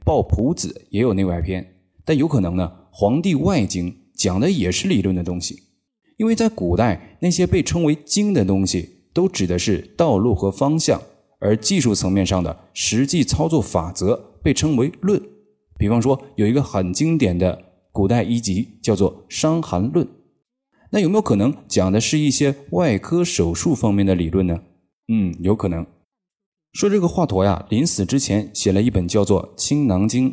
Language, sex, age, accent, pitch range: Chinese, male, 20-39, native, 95-150 Hz